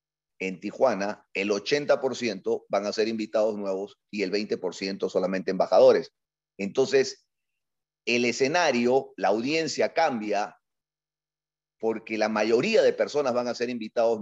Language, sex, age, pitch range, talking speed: Spanish, male, 40-59, 110-155 Hz, 120 wpm